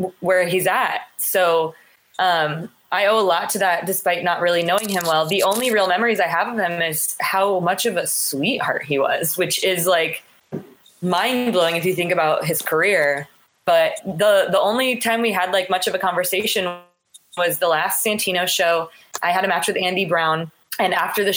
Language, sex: English, female